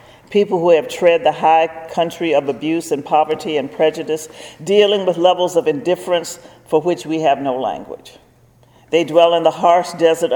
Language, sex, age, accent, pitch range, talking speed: English, male, 50-69, American, 150-180 Hz, 175 wpm